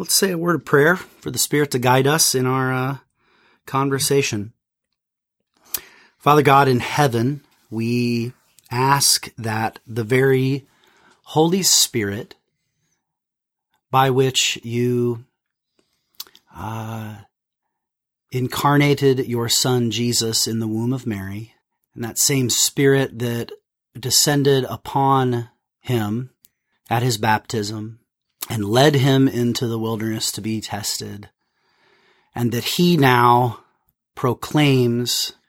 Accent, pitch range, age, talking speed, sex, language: American, 110-135 Hz, 30-49, 110 wpm, male, English